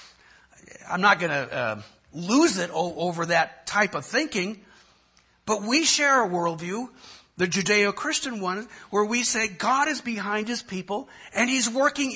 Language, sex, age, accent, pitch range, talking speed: English, male, 60-79, American, 160-245 Hz, 155 wpm